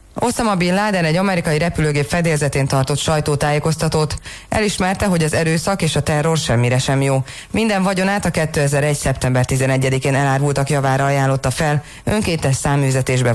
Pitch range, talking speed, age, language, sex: 130-165 Hz, 145 wpm, 20-39, Hungarian, female